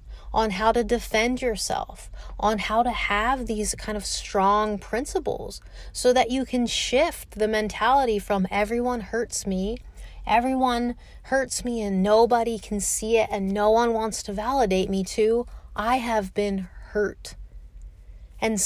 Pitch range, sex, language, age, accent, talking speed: 195-235 Hz, female, English, 30-49, American, 150 wpm